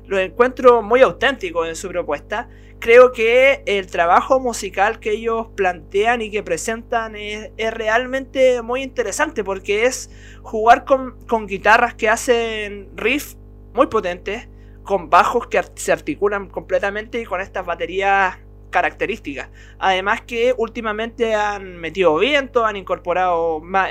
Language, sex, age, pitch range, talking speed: Spanish, male, 20-39, 195-260 Hz, 135 wpm